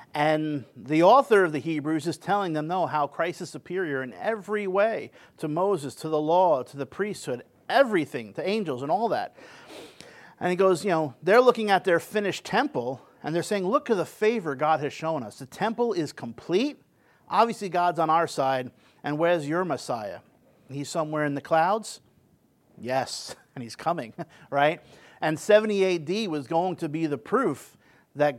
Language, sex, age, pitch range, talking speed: English, male, 50-69, 145-185 Hz, 180 wpm